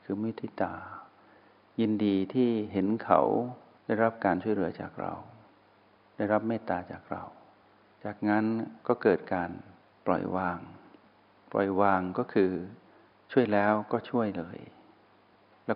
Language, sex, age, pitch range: Thai, male, 60-79, 95-115 Hz